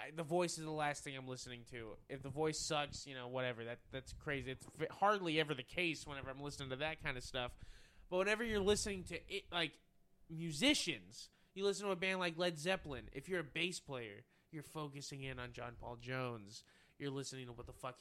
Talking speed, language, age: 225 wpm, English, 20-39